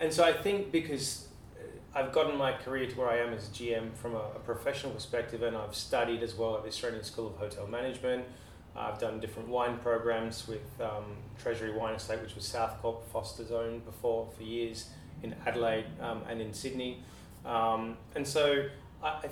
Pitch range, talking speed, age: 110-130 Hz, 195 wpm, 30-49